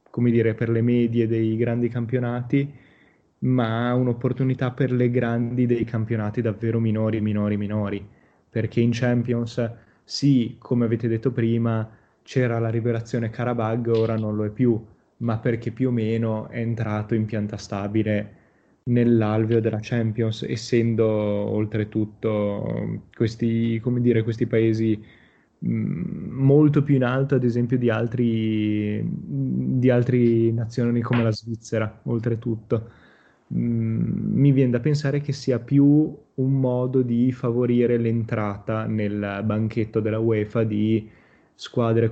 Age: 20-39